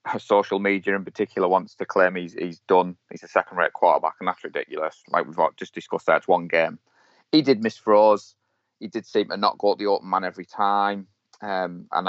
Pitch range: 90-105 Hz